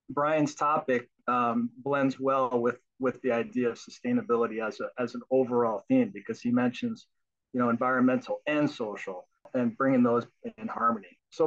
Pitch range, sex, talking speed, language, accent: 120-150 Hz, male, 160 wpm, English, American